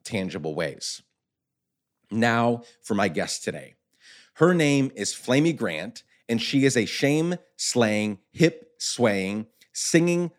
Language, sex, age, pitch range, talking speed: English, male, 30-49, 110-150 Hz, 110 wpm